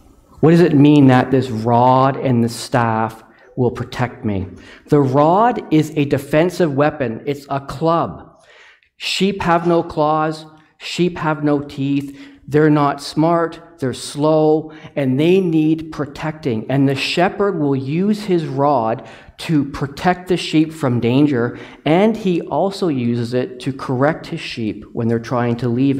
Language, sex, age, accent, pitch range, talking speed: English, male, 40-59, American, 135-170 Hz, 150 wpm